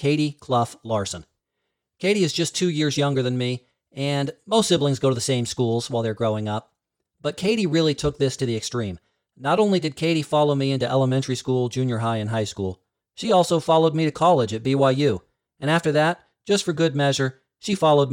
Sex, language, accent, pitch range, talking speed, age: male, English, American, 115-145 Hz, 205 wpm, 40-59